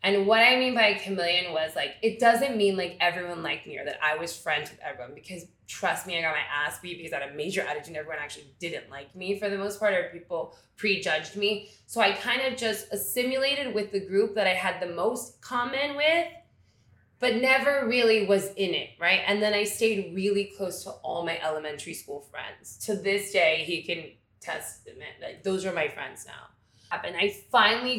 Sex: female